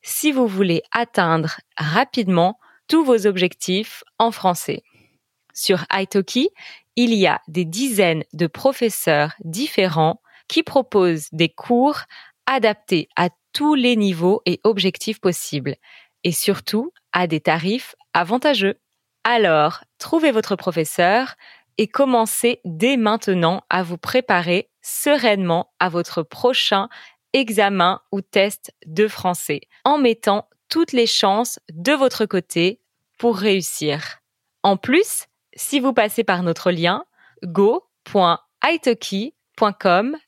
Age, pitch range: 20-39, 175-250 Hz